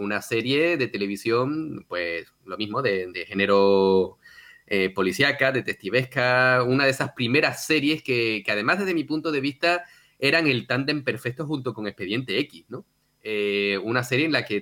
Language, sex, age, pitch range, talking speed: Spanish, male, 30-49, 110-145 Hz, 170 wpm